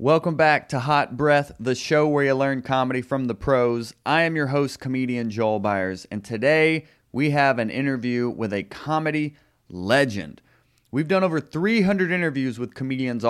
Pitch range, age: 120-150 Hz, 30-49